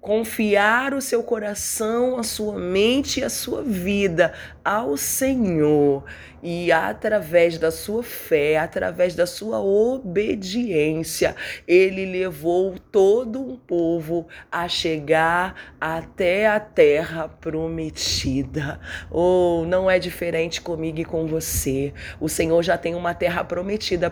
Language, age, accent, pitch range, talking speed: Portuguese, 20-39, Brazilian, 155-200 Hz, 120 wpm